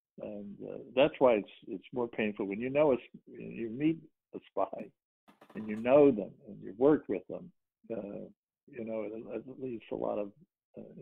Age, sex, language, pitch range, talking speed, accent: 60-79, male, English, 105-145 Hz, 195 wpm, American